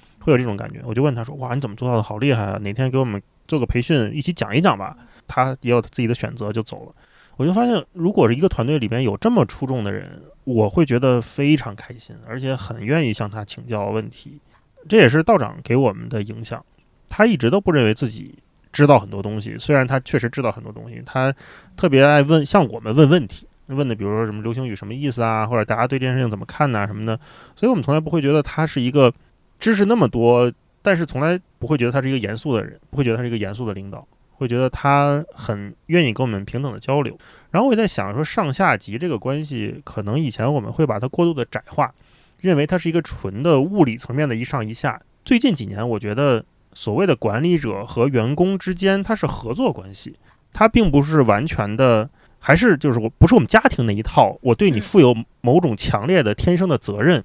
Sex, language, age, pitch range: male, Chinese, 20-39, 115-155 Hz